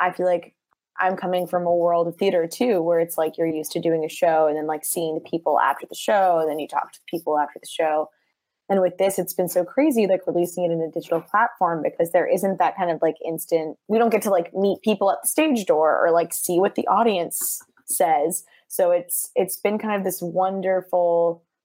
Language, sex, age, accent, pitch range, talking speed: English, female, 10-29, American, 170-210 Hz, 240 wpm